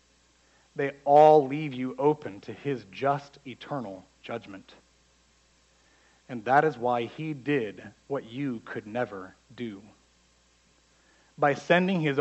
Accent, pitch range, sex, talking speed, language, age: American, 95-150 Hz, male, 120 wpm, English, 40-59